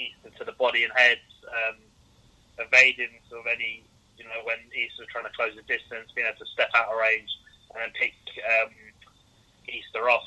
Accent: British